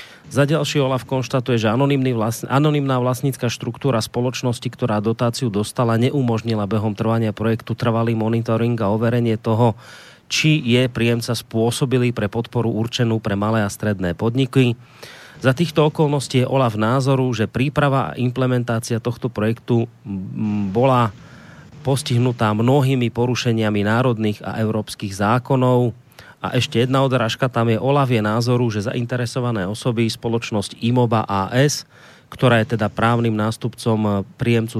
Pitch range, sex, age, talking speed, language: 110-125 Hz, male, 30-49, 125 wpm, Slovak